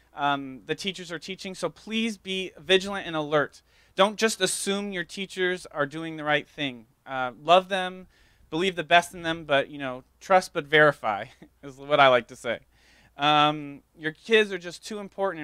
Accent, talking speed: American, 185 wpm